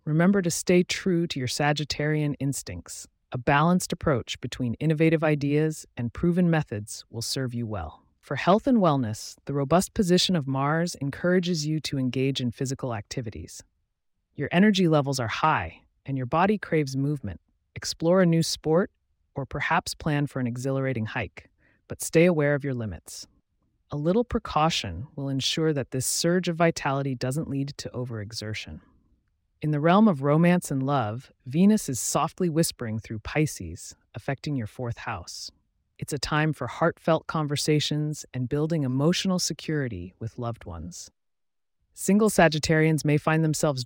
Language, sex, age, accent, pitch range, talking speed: English, female, 30-49, American, 120-165 Hz, 155 wpm